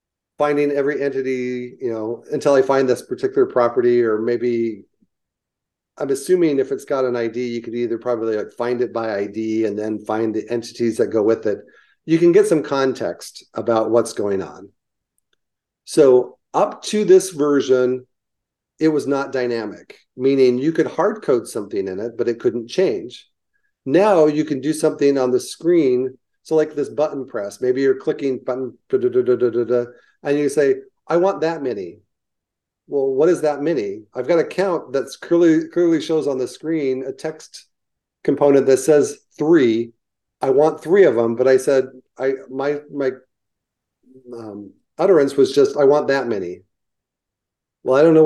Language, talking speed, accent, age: English, 180 wpm, American, 40-59